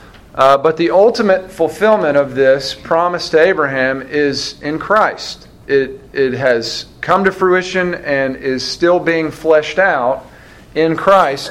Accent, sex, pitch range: American, male, 135-180 Hz